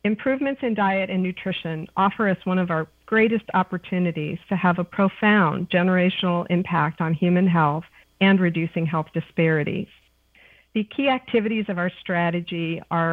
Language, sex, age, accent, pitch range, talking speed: English, female, 50-69, American, 165-200 Hz, 145 wpm